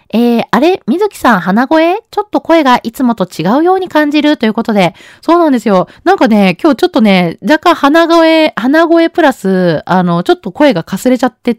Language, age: Japanese, 20-39